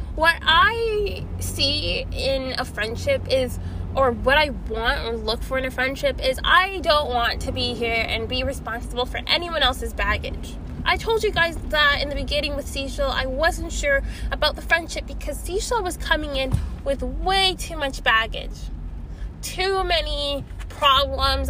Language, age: English, 10-29